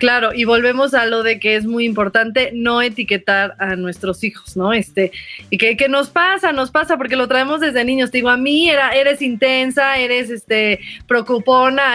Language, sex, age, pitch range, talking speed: Spanish, female, 30-49, 220-270 Hz, 195 wpm